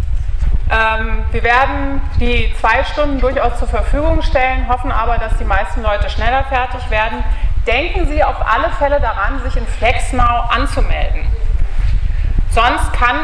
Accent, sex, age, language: German, female, 30-49, German